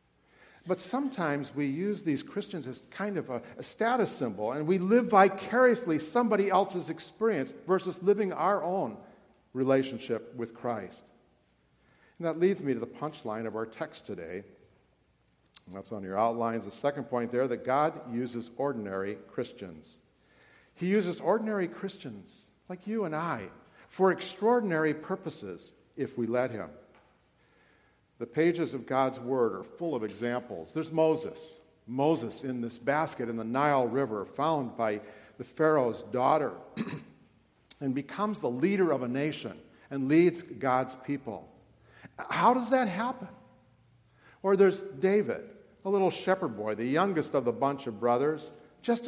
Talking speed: 150 wpm